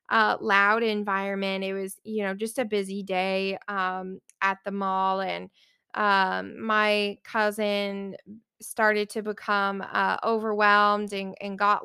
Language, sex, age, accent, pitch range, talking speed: English, female, 20-39, American, 205-235 Hz, 135 wpm